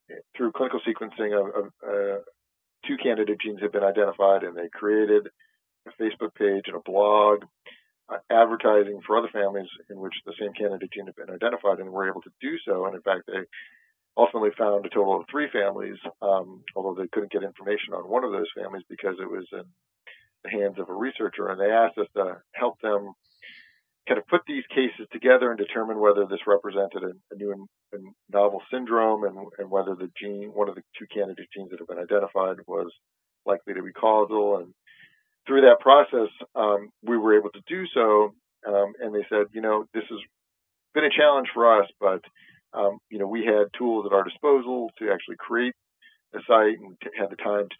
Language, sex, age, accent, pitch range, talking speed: English, male, 40-59, American, 100-115 Hz, 200 wpm